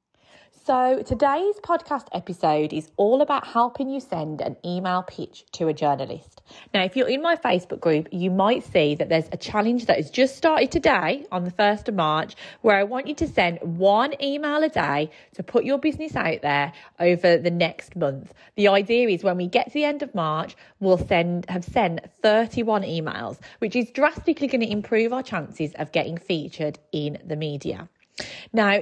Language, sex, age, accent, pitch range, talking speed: English, female, 30-49, British, 170-240 Hz, 190 wpm